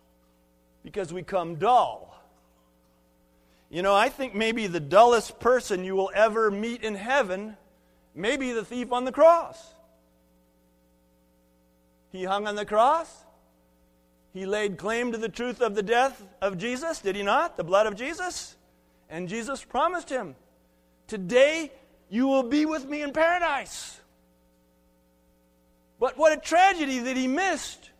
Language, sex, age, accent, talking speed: English, male, 50-69, American, 145 wpm